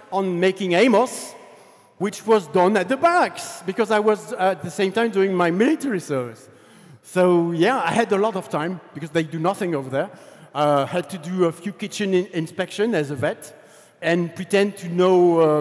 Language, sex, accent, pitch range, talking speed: Polish, male, French, 150-190 Hz, 195 wpm